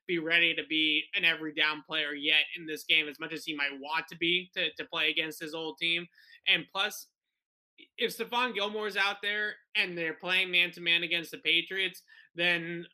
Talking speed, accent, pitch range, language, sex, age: 200 wpm, American, 155-185 Hz, English, male, 20-39